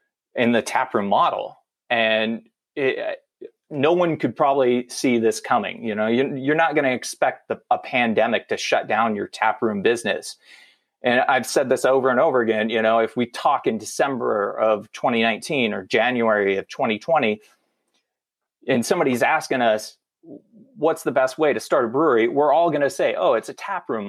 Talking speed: 175 wpm